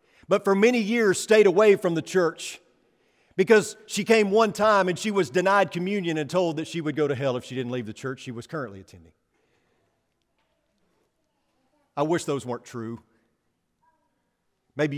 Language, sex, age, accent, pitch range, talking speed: English, male, 40-59, American, 140-205 Hz, 170 wpm